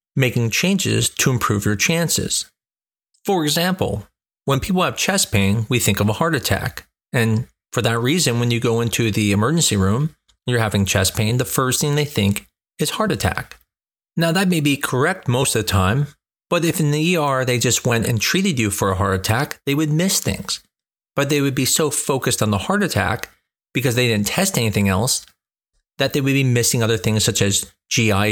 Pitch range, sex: 110-150 Hz, male